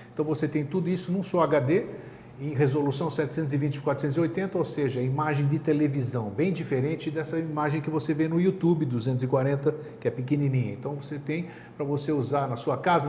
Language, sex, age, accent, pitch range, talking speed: Portuguese, male, 50-69, Brazilian, 135-170 Hz, 175 wpm